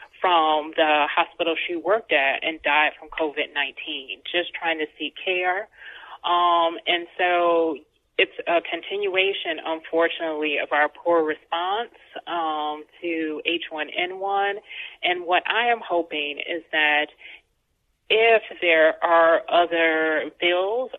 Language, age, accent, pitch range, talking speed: English, 30-49, American, 160-180 Hz, 115 wpm